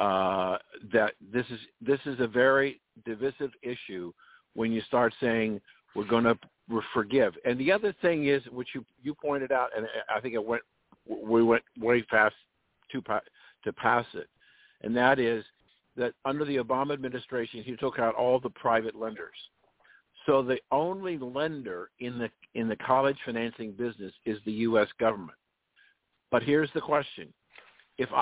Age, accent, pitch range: 50-69, American, 115-145 Hz